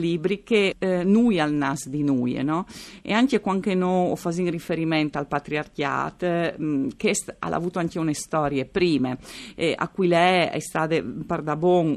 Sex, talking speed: female, 165 wpm